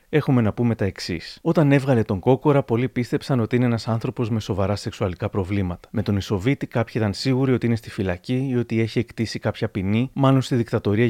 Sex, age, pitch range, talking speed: male, 30-49, 105-130 Hz, 205 wpm